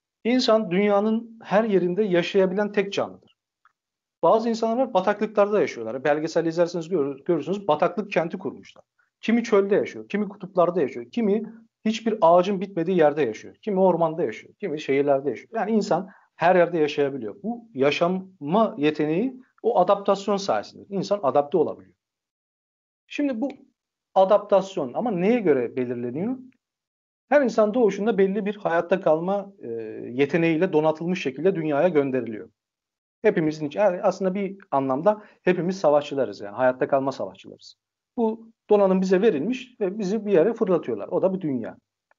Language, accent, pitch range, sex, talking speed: Turkish, native, 160-215 Hz, male, 135 wpm